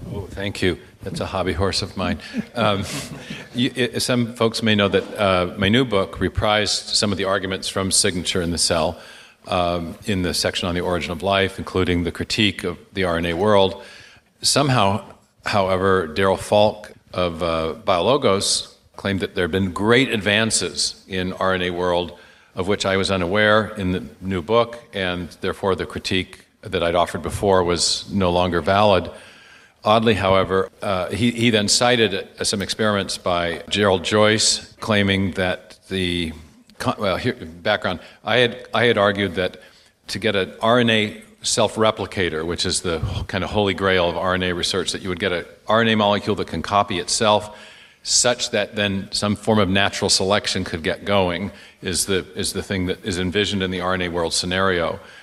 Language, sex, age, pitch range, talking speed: English, male, 50-69, 90-105 Hz, 170 wpm